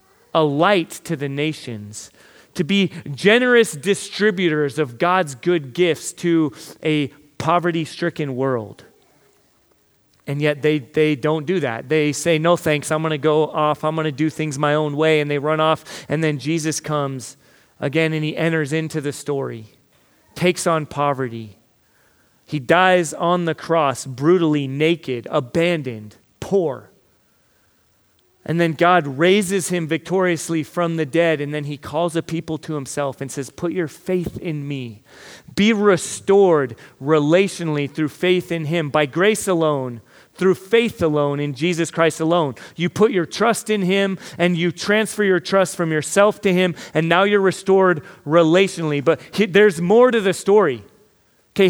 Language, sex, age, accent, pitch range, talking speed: English, male, 30-49, American, 145-180 Hz, 155 wpm